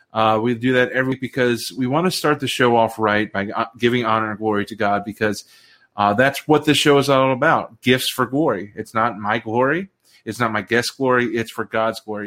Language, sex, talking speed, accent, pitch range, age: English, male, 230 wpm, American, 110-135 Hz, 30-49